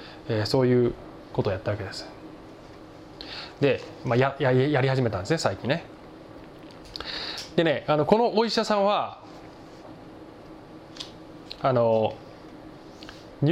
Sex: male